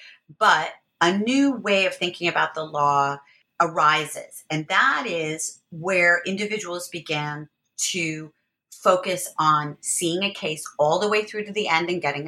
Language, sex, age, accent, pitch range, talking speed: English, female, 30-49, American, 150-190 Hz, 150 wpm